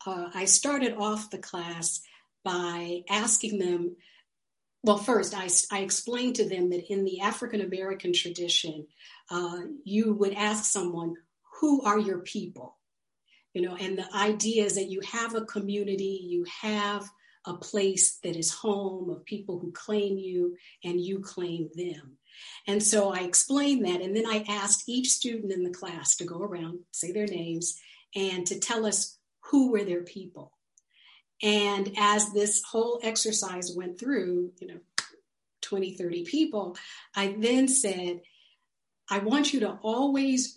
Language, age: English, 50-69